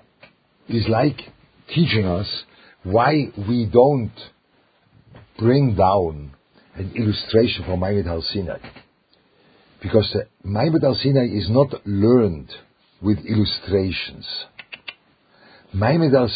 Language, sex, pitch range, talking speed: English, male, 90-120 Hz, 85 wpm